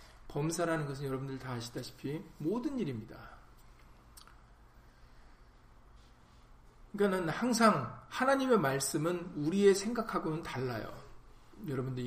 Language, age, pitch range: Korean, 40-59, 130-185 Hz